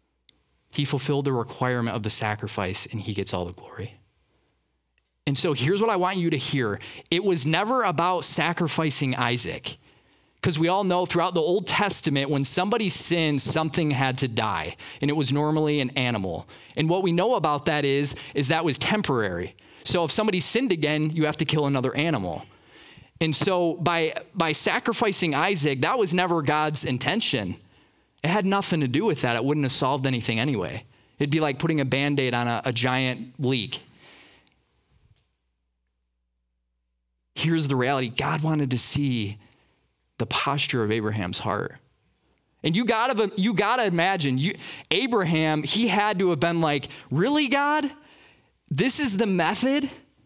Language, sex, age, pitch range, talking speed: English, male, 30-49, 125-180 Hz, 165 wpm